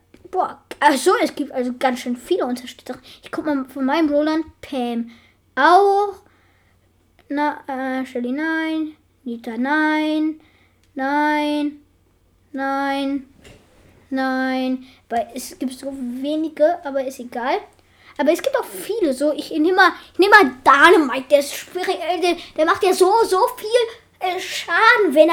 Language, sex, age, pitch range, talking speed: German, female, 10-29, 270-365 Hz, 140 wpm